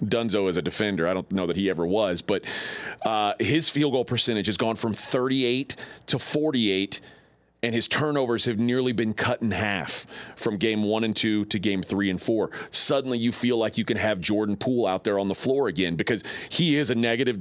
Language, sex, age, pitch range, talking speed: English, male, 30-49, 100-140 Hz, 215 wpm